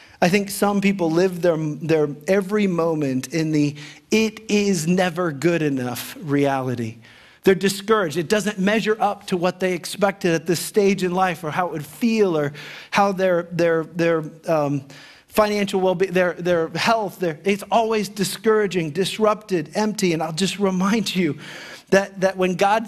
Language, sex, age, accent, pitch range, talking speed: English, male, 40-59, American, 165-200 Hz, 165 wpm